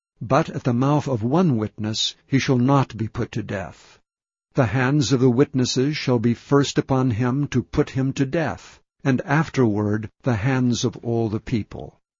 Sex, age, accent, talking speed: male, 60-79, American, 180 wpm